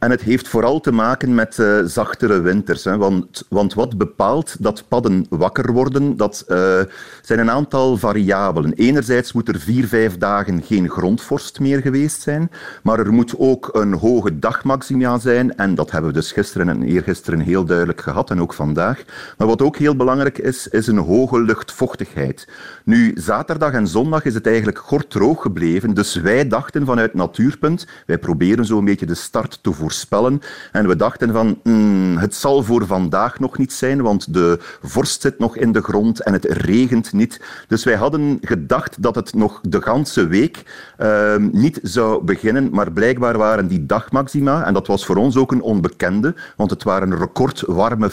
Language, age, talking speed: Dutch, 40-59, 185 wpm